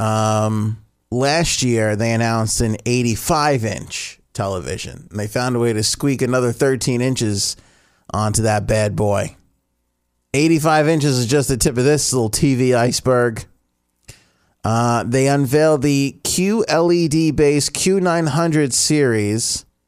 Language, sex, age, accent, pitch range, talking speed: English, male, 30-49, American, 115-150 Hz, 120 wpm